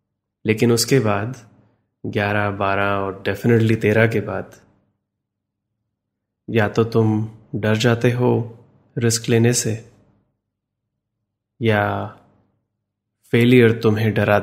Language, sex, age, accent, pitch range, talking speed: Hindi, male, 20-39, native, 105-115 Hz, 95 wpm